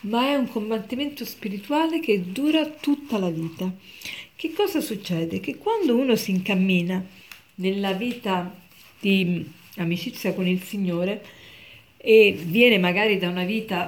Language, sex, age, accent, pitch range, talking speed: Italian, female, 50-69, native, 185-245 Hz, 135 wpm